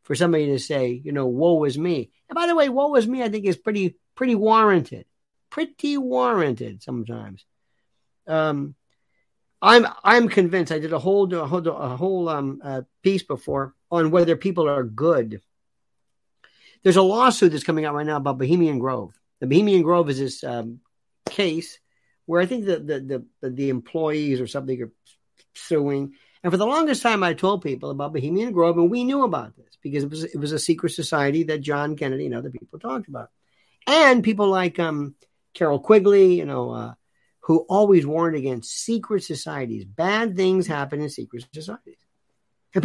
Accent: American